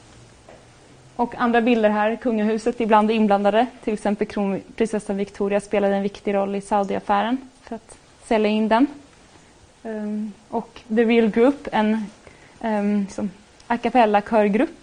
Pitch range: 195-230 Hz